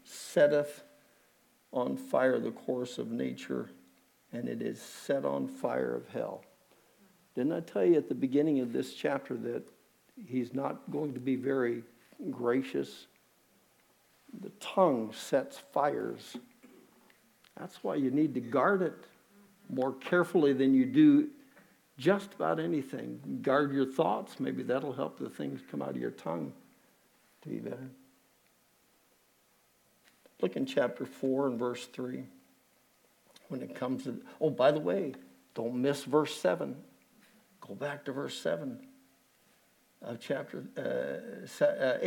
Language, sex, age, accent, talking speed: English, male, 60-79, American, 135 wpm